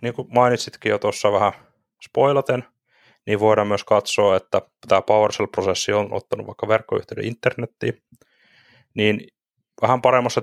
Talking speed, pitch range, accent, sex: 125 wpm, 100-115 Hz, native, male